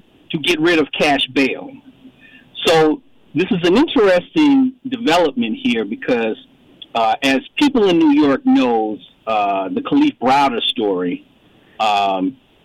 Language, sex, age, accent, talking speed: English, male, 50-69, American, 130 wpm